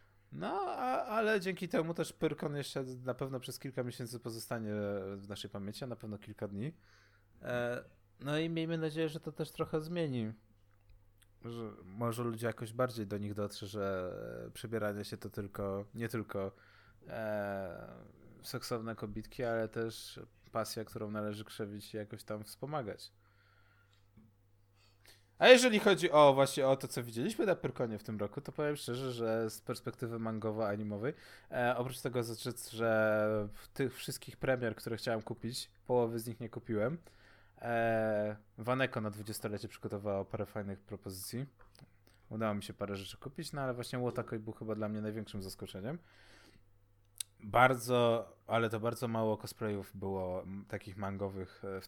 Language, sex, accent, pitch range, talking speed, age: Polish, male, native, 100-125 Hz, 155 wpm, 20-39